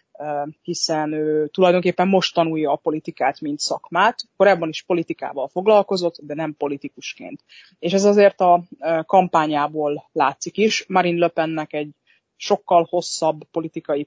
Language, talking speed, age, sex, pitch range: Hungarian, 125 wpm, 20-39, female, 155-180 Hz